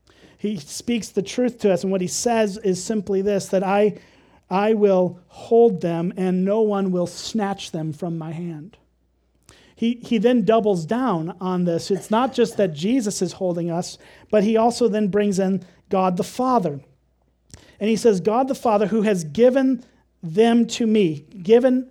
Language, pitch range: English, 180-225 Hz